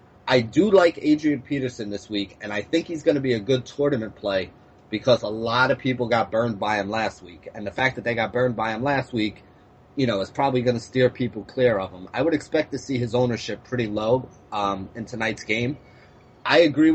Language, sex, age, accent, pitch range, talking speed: English, male, 30-49, American, 110-135 Hz, 235 wpm